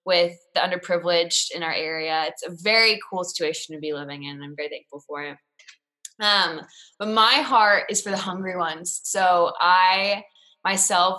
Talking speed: 175 wpm